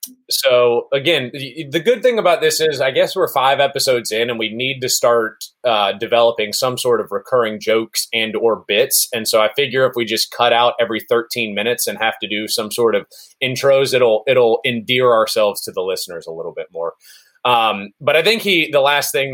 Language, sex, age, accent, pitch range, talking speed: English, male, 30-49, American, 130-205 Hz, 210 wpm